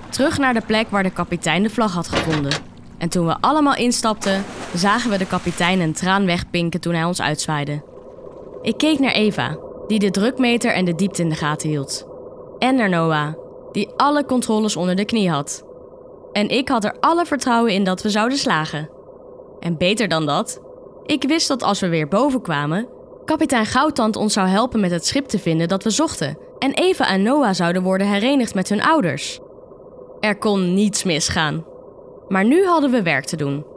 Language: Dutch